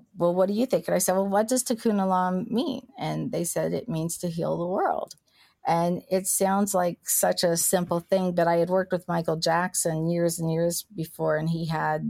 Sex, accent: female, American